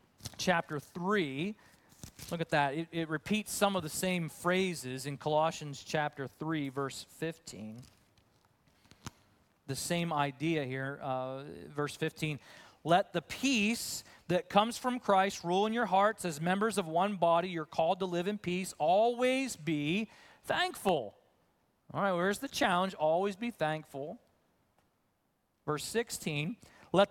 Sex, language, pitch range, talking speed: male, English, 155-215 Hz, 135 wpm